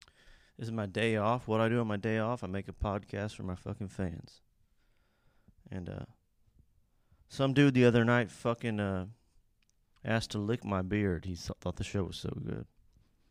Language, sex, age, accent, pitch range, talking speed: English, male, 30-49, American, 95-115 Hz, 185 wpm